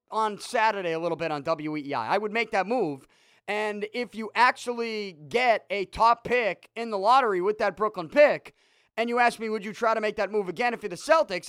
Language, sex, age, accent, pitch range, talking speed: English, male, 30-49, American, 190-260 Hz, 225 wpm